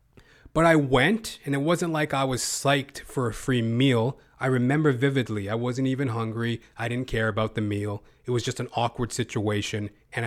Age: 30-49